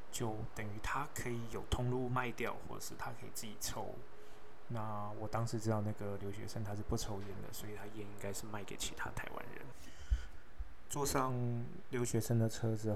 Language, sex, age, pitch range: Chinese, male, 20-39, 105-125 Hz